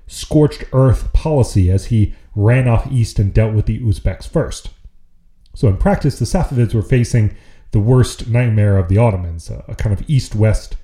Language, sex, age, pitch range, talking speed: English, male, 30-49, 95-130 Hz, 170 wpm